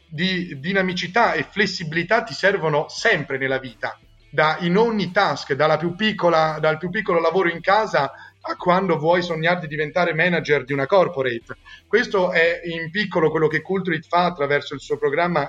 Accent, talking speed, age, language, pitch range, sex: native, 170 wpm, 30-49, Italian, 140-175 Hz, male